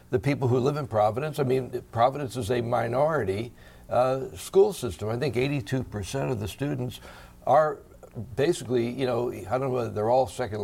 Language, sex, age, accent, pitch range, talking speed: English, male, 60-79, American, 100-130 Hz, 150 wpm